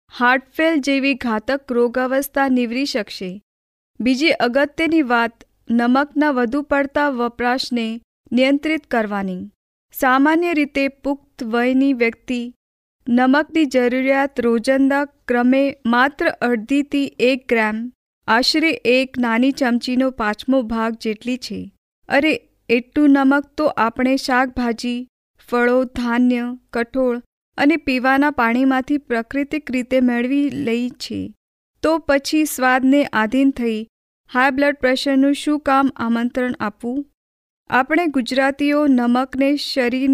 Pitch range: 240-280 Hz